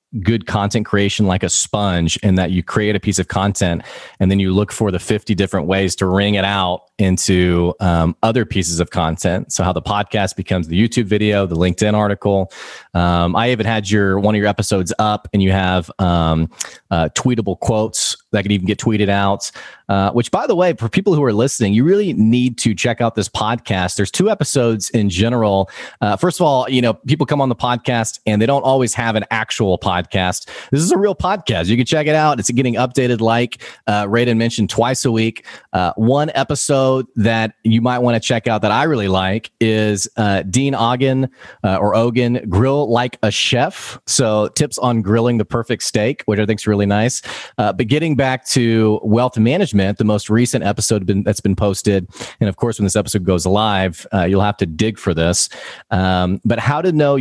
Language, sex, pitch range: English, male, 100-120 Hz